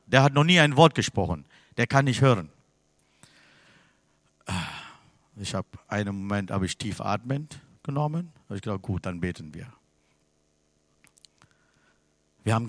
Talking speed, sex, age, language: 135 wpm, male, 50-69, German